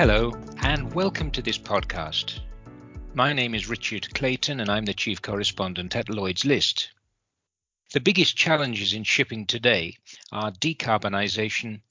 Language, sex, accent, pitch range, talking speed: English, male, British, 100-140 Hz, 135 wpm